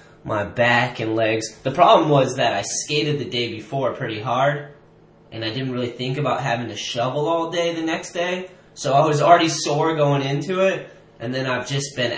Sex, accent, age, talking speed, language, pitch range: male, American, 10-29, 205 wpm, English, 110-140 Hz